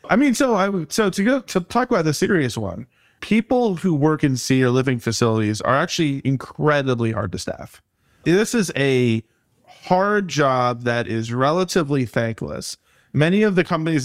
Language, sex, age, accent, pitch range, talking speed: English, male, 30-49, American, 125-155 Hz, 170 wpm